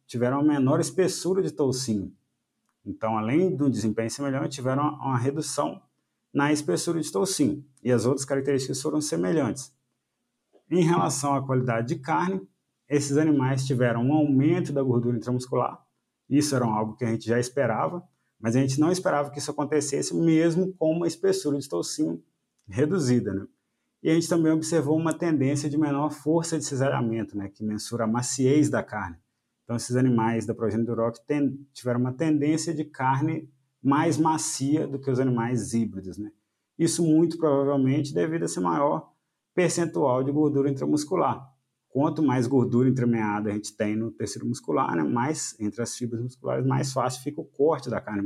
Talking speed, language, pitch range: 170 wpm, Portuguese, 120-150 Hz